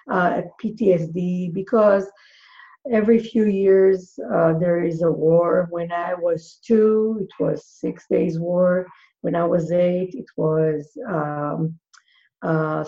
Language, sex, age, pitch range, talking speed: English, female, 50-69, 160-195 Hz, 130 wpm